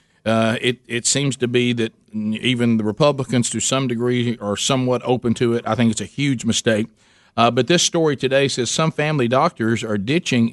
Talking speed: 200 wpm